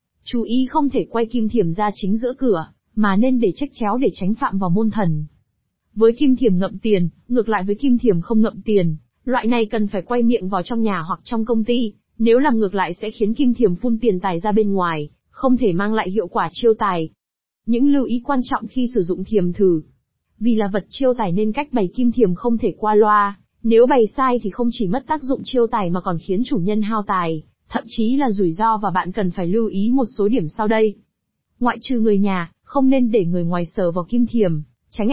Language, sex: Vietnamese, female